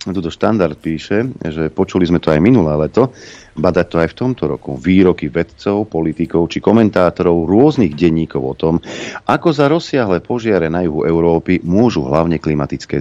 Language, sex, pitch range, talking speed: Slovak, male, 80-100 Hz, 160 wpm